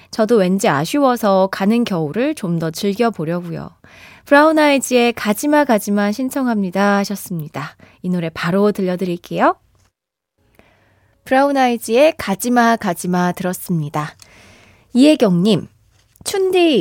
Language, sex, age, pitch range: Korean, female, 20-39, 185-270 Hz